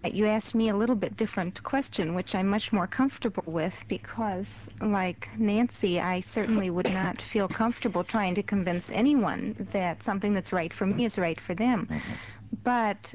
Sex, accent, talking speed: female, American, 175 wpm